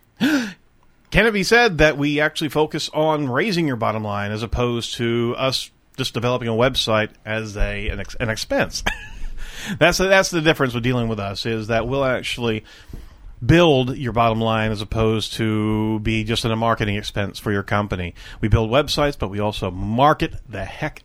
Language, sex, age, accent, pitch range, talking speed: English, male, 40-59, American, 110-150 Hz, 185 wpm